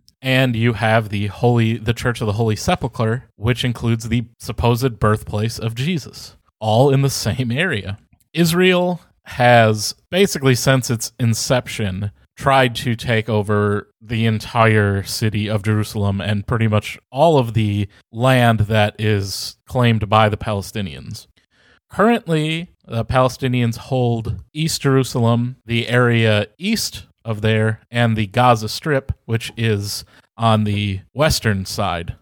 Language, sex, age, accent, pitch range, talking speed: English, male, 30-49, American, 105-130 Hz, 135 wpm